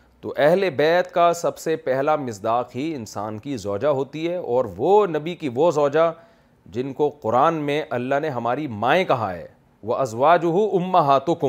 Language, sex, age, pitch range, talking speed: Urdu, male, 40-59, 120-170 Hz, 170 wpm